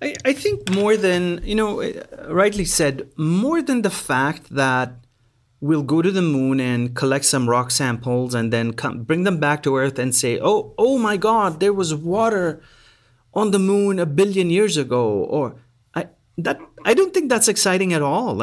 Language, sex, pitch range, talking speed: English, male, 145-205 Hz, 185 wpm